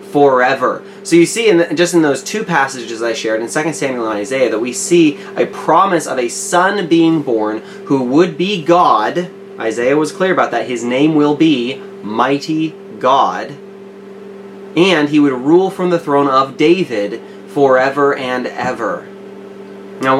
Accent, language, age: American, English, 20-39